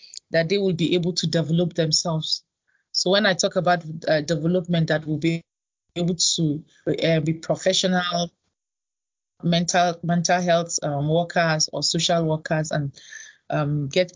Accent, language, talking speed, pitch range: Nigerian, English, 145 wpm, 160-185 Hz